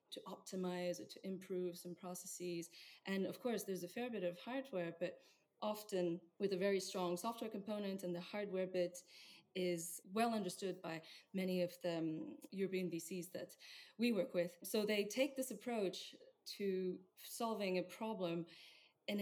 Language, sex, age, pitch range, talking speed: English, female, 20-39, 175-200 Hz, 160 wpm